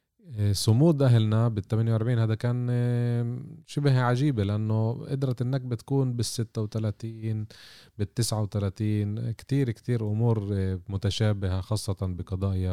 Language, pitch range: Arabic, 100-120 Hz